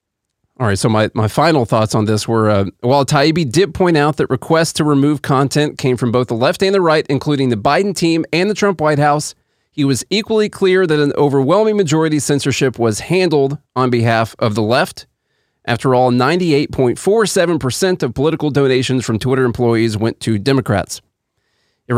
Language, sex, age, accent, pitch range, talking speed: English, male, 30-49, American, 115-165 Hz, 185 wpm